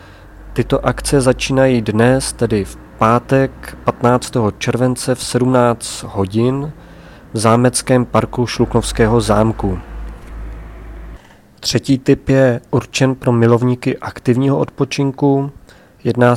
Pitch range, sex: 110-125 Hz, male